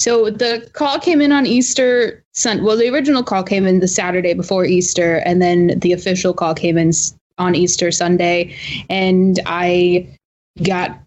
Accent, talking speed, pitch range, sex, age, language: American, 170 wpm, 180-205 Hz, female, 20-39, English